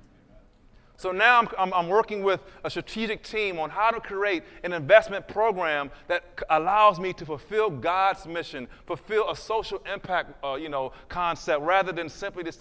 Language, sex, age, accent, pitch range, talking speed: English, male, 30-49, American, 165-205 Hz, 175 wpm